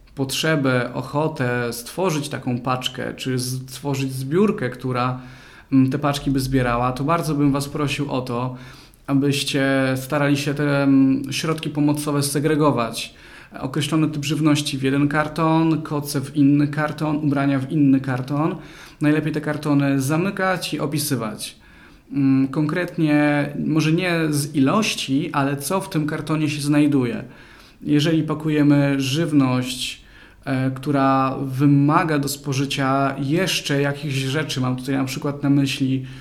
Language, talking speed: Polish, 125 wpm